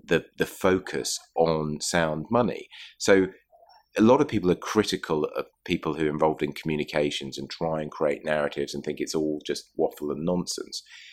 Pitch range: 80-100 Hz